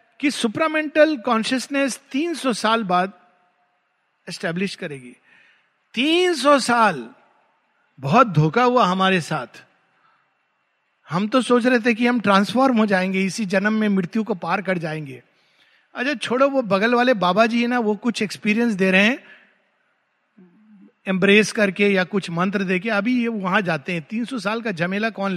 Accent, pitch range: native, 190-265 Hz